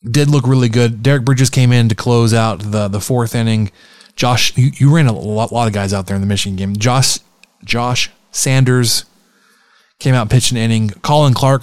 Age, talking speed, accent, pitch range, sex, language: 20-39, 205 wpm, American, 100-130 Hz, male, English